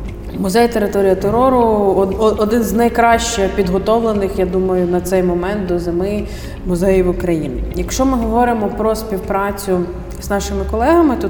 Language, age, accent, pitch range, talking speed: Ukrainian, 20-39, native, 185-215 Hz, 135 wpm